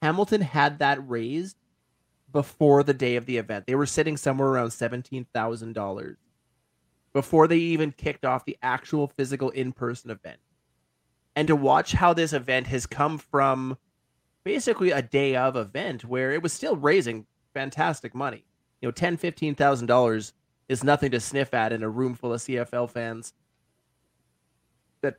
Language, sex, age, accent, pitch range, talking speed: English, male, 30-49, American, 115-145 Hz, 150 wpm